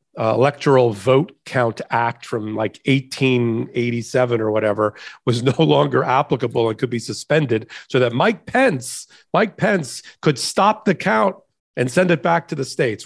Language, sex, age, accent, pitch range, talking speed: English, male, 40-59, American, 125-170 Hz, 160 wpm